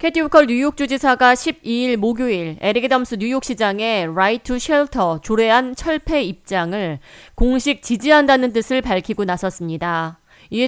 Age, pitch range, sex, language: 40-59, 195-260 Hz, female, Korean